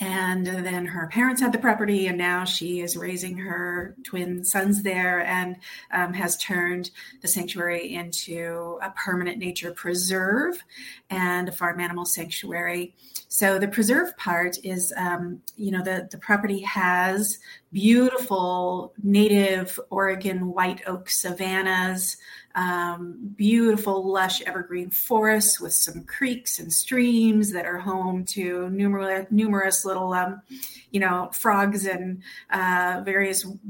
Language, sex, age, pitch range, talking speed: English, female, 30-49, 180-215 Hz, 130 wpm